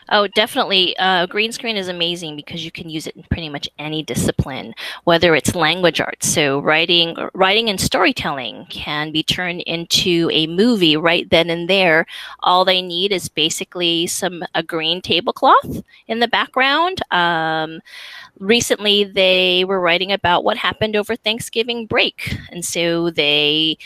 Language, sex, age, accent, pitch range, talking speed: English, female, 30-49, American, 160-195 Hz, 155 wpm